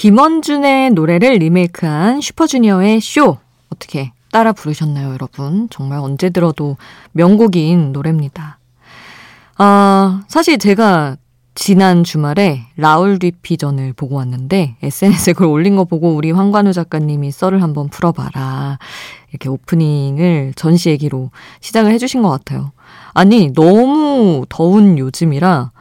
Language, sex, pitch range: Korean, female, 145-200 Hz